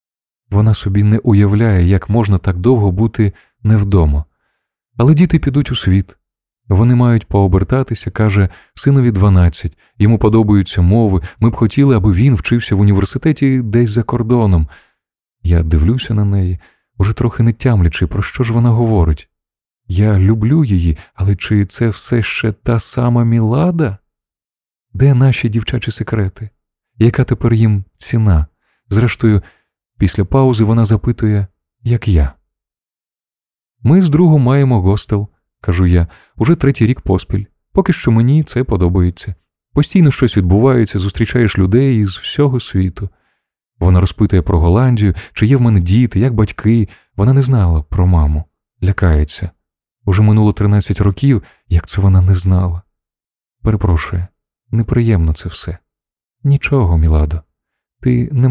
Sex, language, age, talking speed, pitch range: male, Ukrainian, 20-39, 135 wpm, 95-120 Hz